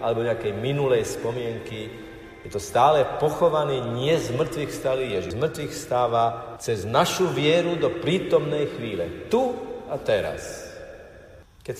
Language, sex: Slovak, male